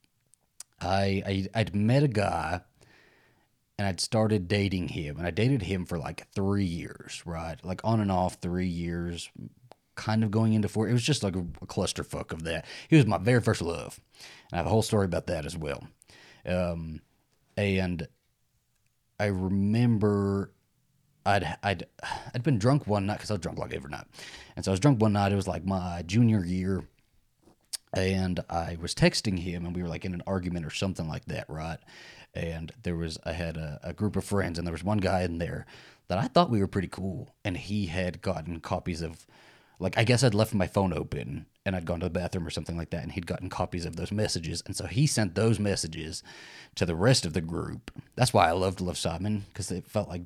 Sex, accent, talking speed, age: male, American, 215 wpm, 30-49